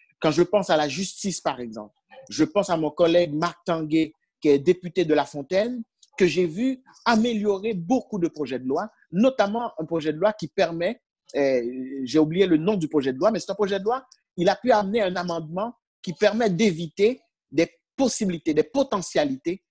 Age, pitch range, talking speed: 50-69, 145-200 Hz, 200 wpm